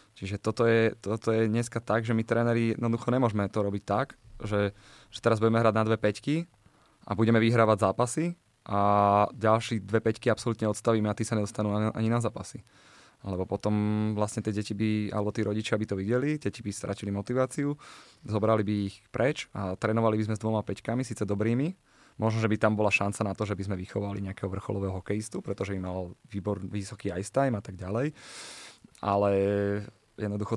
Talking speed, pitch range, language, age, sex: 190 wpm, 100-115 Hz, Slovak, 20-39, male